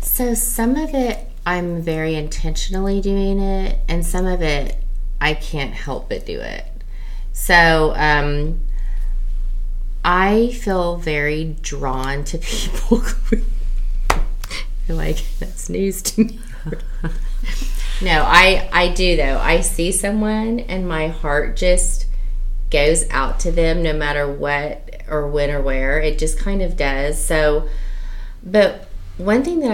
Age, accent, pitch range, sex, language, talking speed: 30-49, American, 150-195 Hz, female, English, 135 wpm